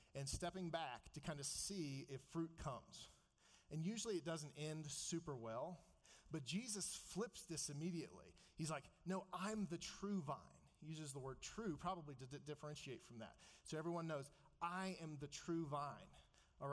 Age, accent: 40-59, American